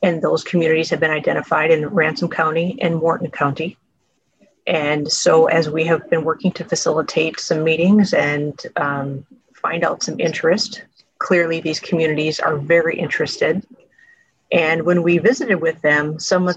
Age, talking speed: 30-49, 155 wpm